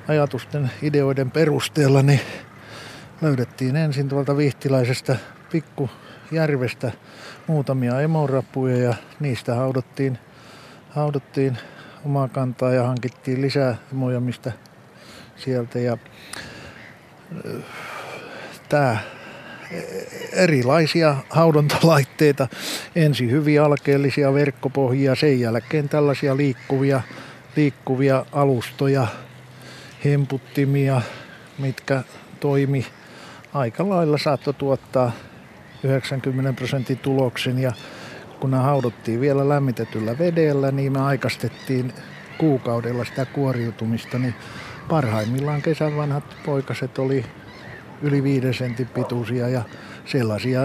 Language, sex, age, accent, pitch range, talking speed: Finnish, male, 50-69, native, 125-145 Hz, 85 wpm